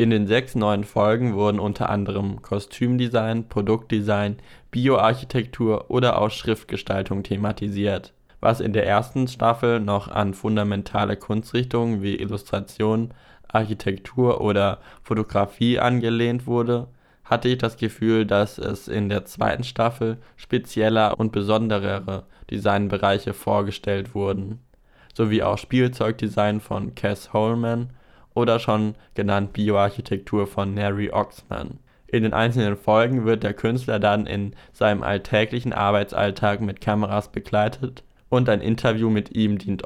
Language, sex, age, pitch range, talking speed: German, male, 20-39, 100-115 Hz, 120 wpm